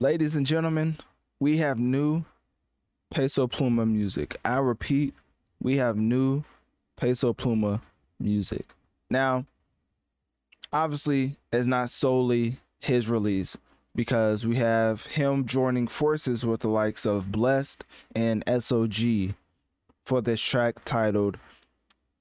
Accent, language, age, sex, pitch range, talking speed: American, English, 20-39, male, 110-135 Hz, 110 wpm